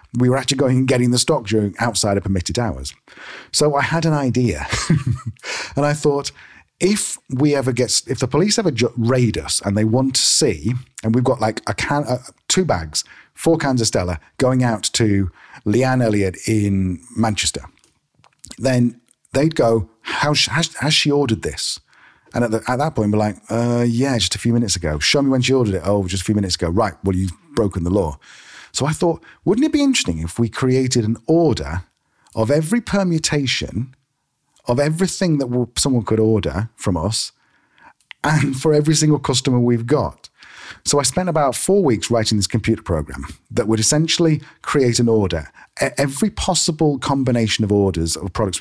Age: 40-59